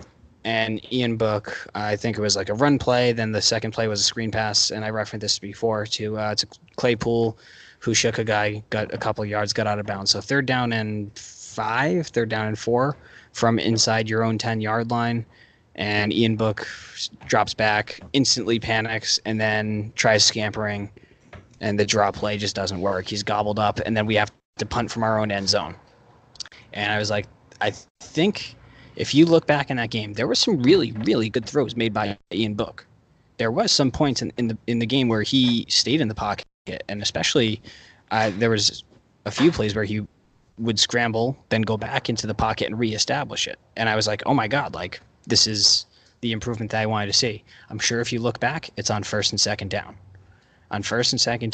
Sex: male